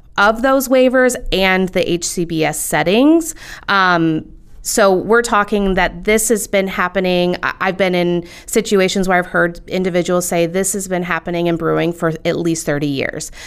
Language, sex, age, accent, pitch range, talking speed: English, female, 30-49, American, 170-200 Hz, 160 wpm